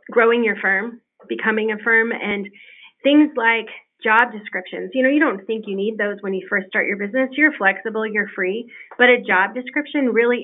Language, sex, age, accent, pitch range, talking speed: English, female, 30-49, American, 205-255 Hz, 195 wpm